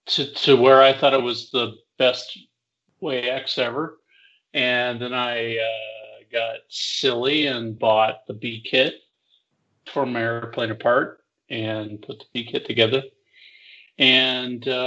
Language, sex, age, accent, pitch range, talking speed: English, male, 40-59, American, 115-155 Hz, 130 wpm